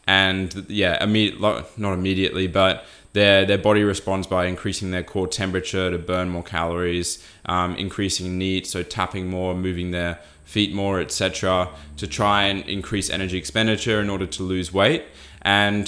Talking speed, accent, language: 160 wpm, Australian, English